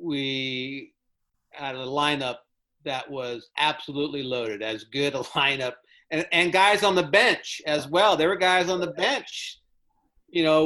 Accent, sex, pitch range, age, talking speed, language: American, male, 140-170 Hz, 50-69, 160 wpm, English